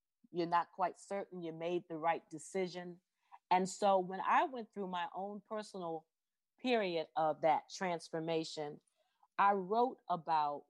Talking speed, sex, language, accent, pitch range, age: 140 wpm, female, English, American, 155-190 Hz, 40-59